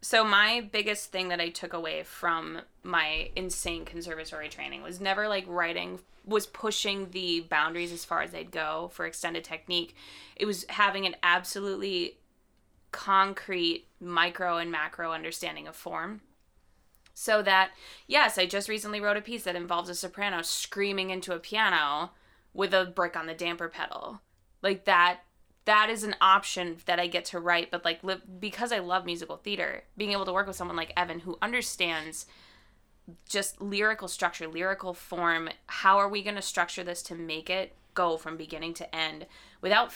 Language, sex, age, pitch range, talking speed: English, female, 20-39, 165-200 Hz, 170 wpm